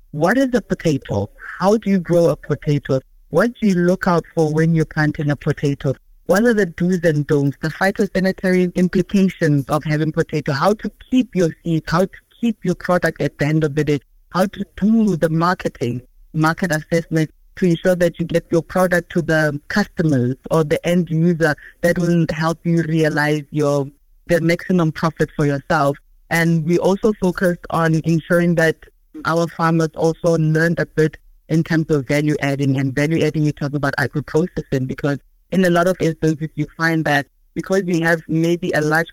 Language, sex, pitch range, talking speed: English, female, 150-175 Hz, 180 wpm